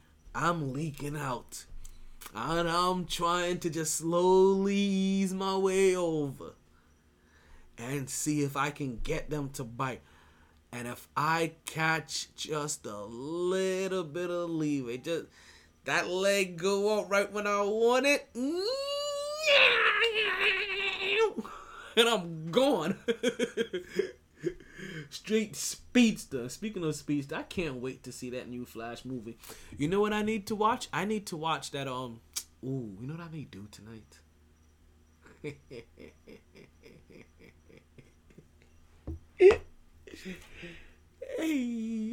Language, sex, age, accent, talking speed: English, male, 30-49, American, 115 wpm